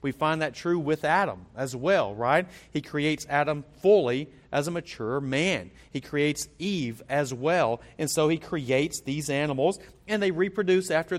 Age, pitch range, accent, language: 40-59, 140-185 Hz, American, English